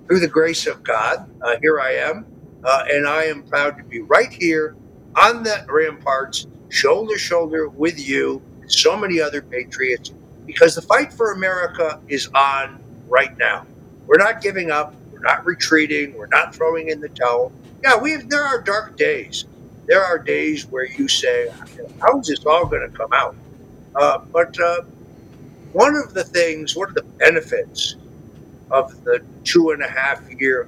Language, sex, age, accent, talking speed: English, male, 60-79, American, 170 wpm